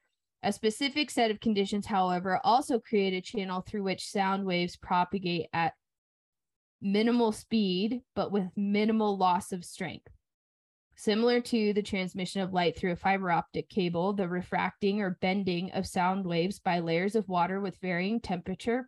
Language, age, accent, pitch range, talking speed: English, 20-39, American, 175-210 Hz, 155 wpm